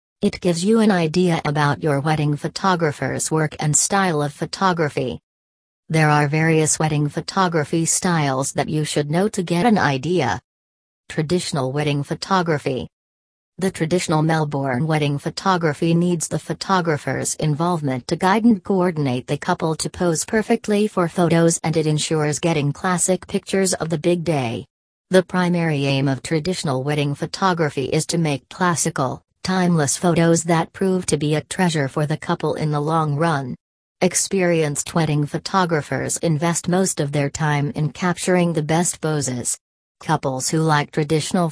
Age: 40-59